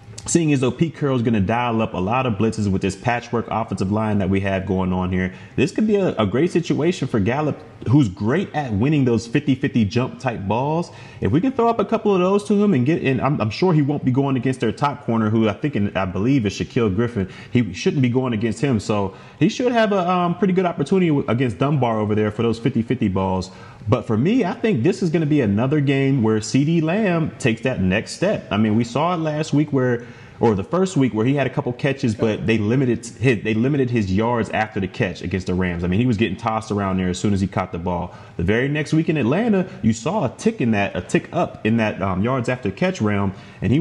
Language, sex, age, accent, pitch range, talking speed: English, male, 30-49, American, 110-150 Hz, 260 wpm